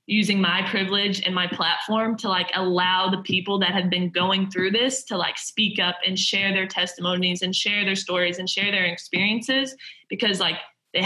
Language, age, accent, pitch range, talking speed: English, 20-39, American, 180-205 Hz, 195 wpm